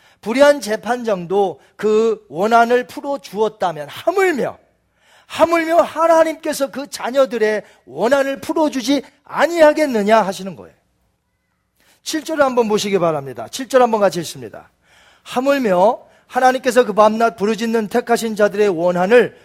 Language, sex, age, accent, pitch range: Korean, male, 40-59, native, 185-255 Hz